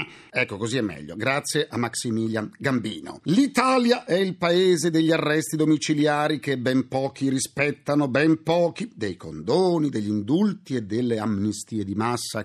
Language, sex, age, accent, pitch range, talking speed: Italian, male, 40-59, native, 120-185 Hz, 145 wpm